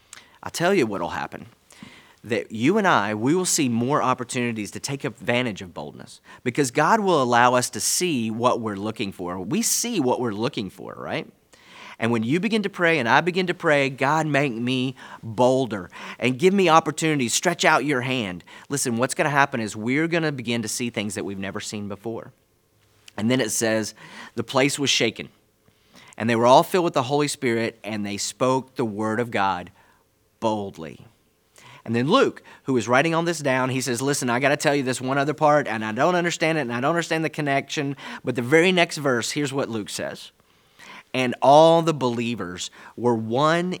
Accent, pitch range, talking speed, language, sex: American, 110-150 Hz, 205 wpm, English, male